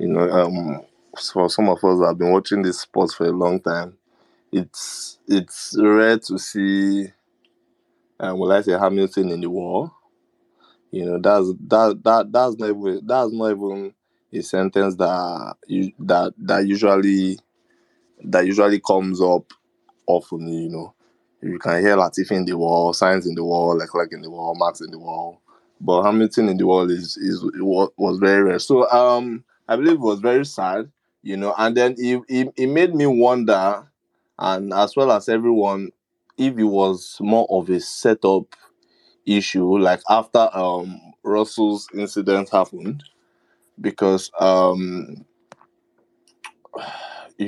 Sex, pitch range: male, 95-115 Hz